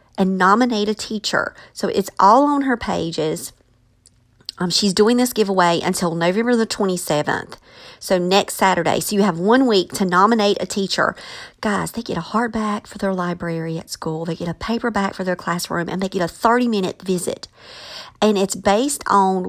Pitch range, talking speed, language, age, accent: 175-230 Hz, 180 wpm, English, 40-59, American